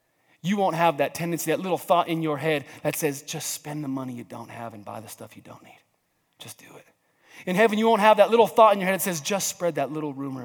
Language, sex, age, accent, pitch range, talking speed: English, male, 30-49, American, 170-245 Hz, 275 wpm